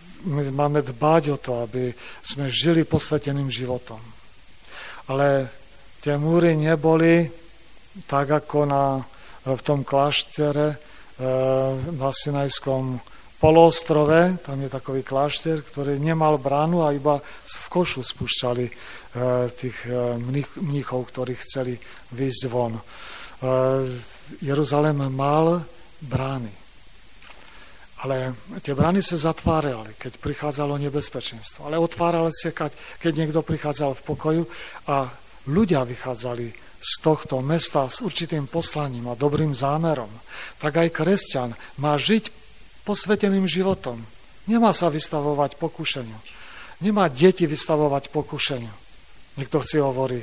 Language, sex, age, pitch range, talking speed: Slovak, male, 40-59, 130-160 Hz, 110 wpm